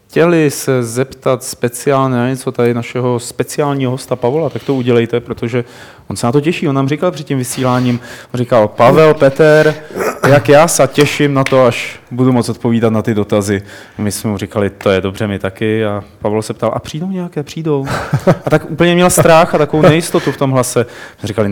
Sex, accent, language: male, native, Czech